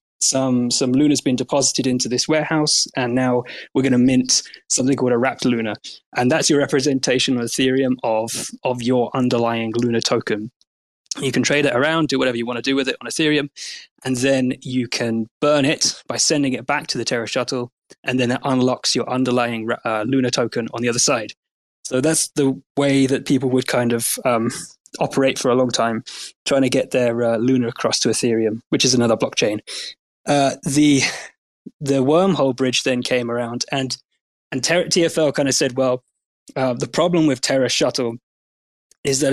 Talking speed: 190 wpm